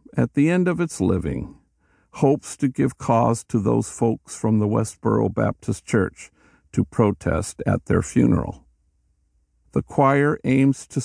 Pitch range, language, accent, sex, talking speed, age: 85-125 Hz, English, American, male, 145 wpm, 50-69